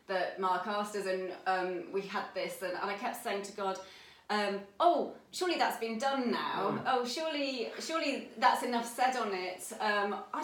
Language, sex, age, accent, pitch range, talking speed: English, female, 30-49, British, 200-250 Hz, 190 wpm